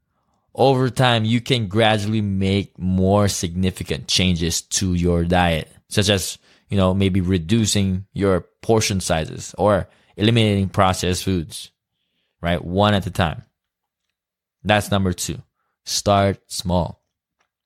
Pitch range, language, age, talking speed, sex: 90-110 Hz, English, 20-39, 120 wpm, male